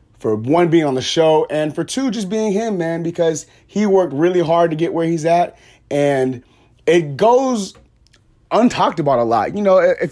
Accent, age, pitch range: American, 30-49, 125-170 Hz